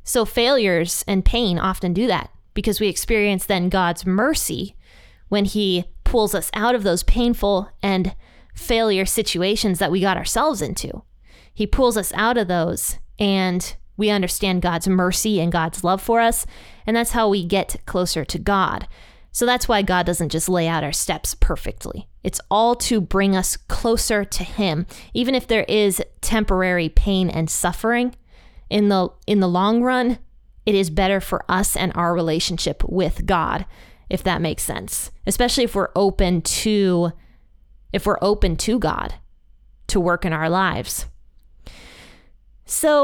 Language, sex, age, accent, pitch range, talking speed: English, female, 20-39, American, 185-225 Hz, 160 wpm